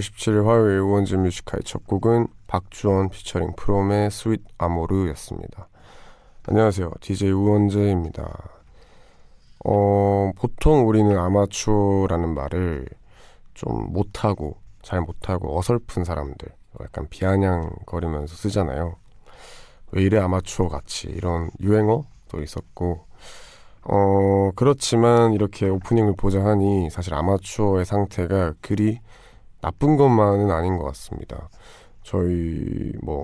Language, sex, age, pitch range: Korean, male, 20-39, 85-105 Hz